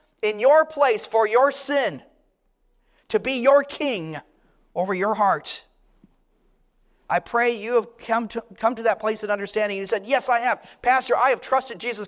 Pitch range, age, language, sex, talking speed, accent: 170-235 Hz, 40-59, English, male, 175 wpm, American